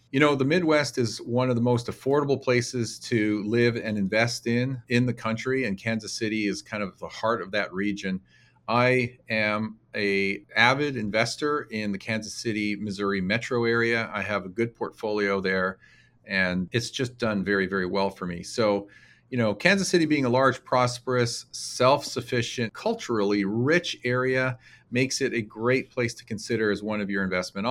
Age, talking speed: 40-59, 180 wpm